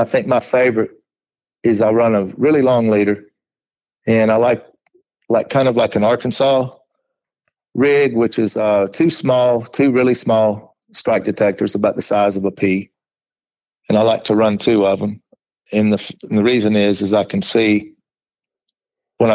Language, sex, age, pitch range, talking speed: English, male, 40-59, 100-120 Hz, 175 wpm